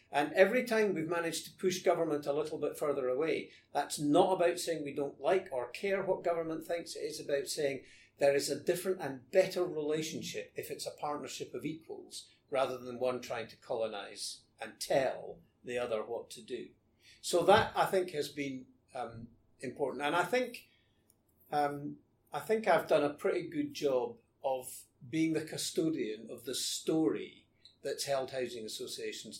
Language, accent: English, British